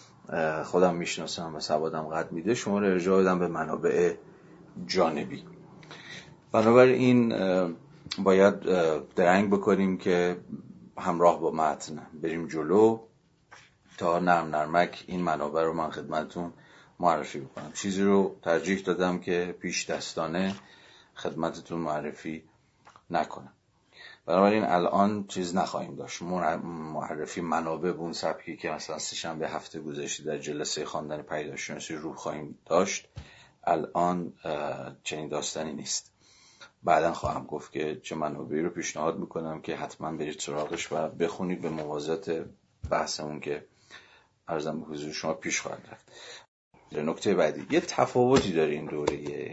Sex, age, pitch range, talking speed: male, 40-59, 80-95 Hz, 120 wpm